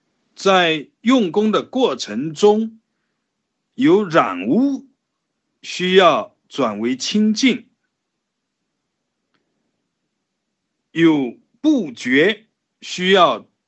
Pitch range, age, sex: 160-250 Hz, 50-69, male